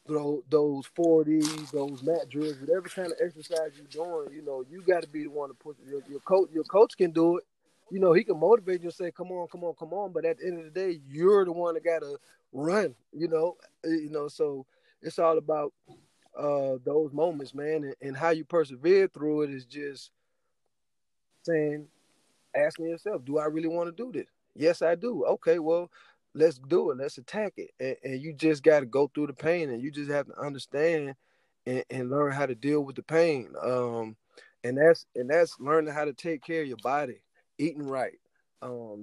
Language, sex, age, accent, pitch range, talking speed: English, male, 20-39, American, 145-165 Hz, 215 wpm